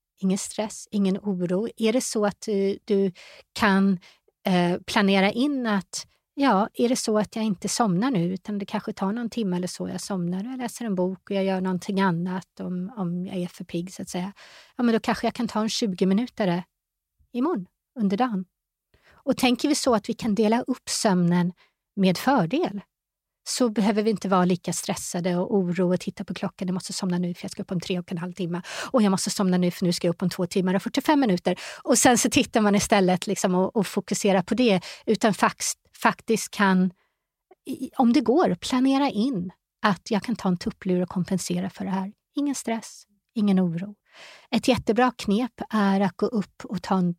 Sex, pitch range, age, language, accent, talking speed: female, 185-230 Hz, 30-49, Swedish, native, 210 wpm